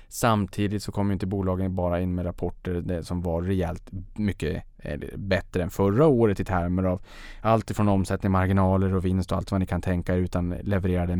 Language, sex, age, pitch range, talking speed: Swedish, male, 20-39, 90-100 Hz, 190 wpm